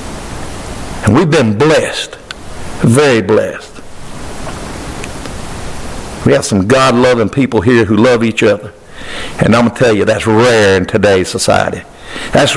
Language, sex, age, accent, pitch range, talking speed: English, male, 60-79, American, 110-180 Hz, 135 wpm